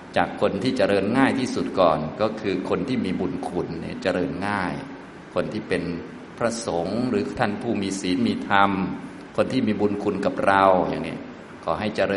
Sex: male